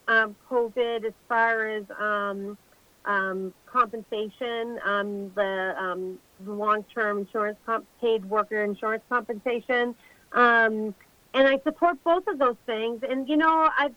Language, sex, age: English, female, 40-59